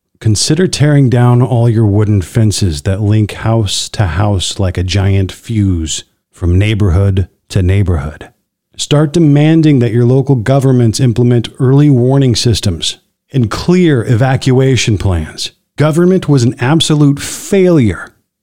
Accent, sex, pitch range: American, male, 100-135 Hz